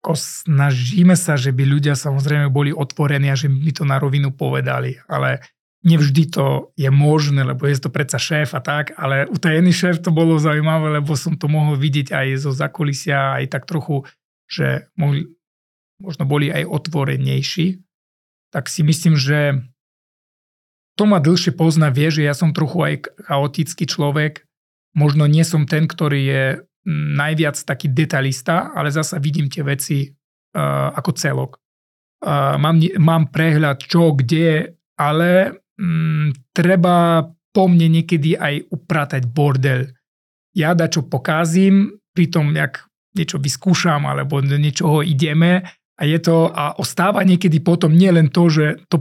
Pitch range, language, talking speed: 140-170 Hz, Slovak, 145 wpm